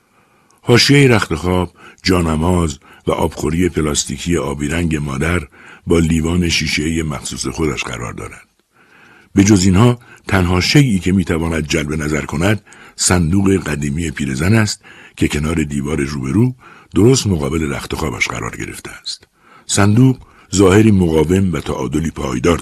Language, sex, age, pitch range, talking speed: Persian, male, 60-79, 75-100 Hz, 120 wpm